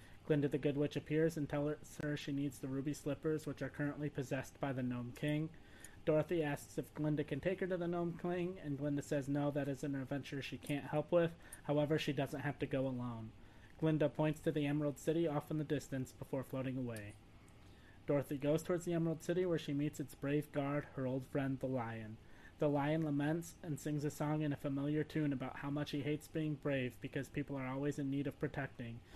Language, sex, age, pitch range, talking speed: English, male, 20-39, 130-150 Hz, 220 wpm